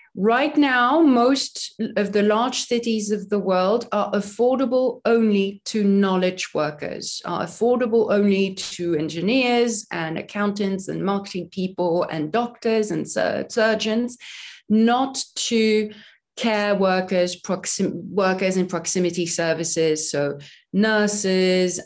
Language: English